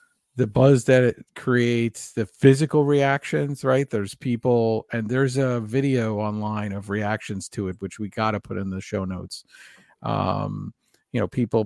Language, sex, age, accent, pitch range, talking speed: English, male, 50-69, American, 105-140 Hz, 170 wpm